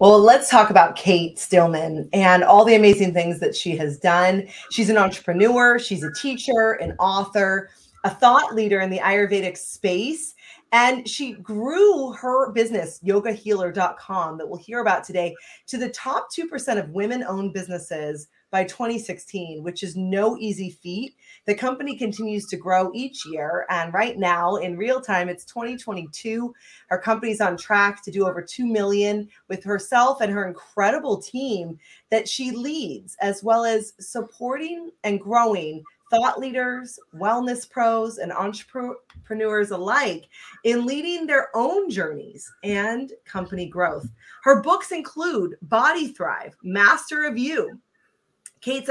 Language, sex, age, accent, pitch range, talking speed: English, female, 30-49, American, 190-260 Hz, 145 wpm